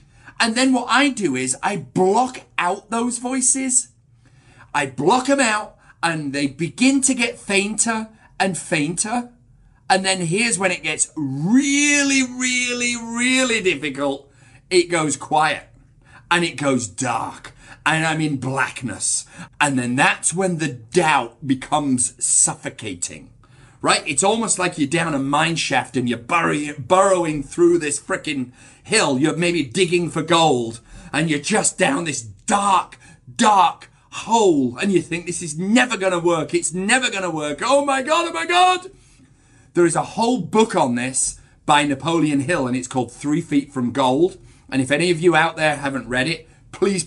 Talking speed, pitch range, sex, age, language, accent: 165 wpm, 135-195 Hz, male, 40-59, English, British